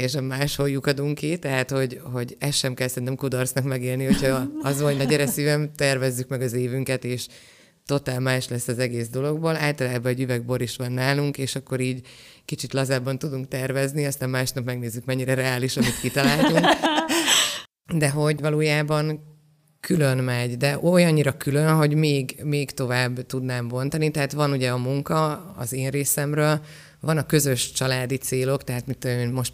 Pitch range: 125-145 Hz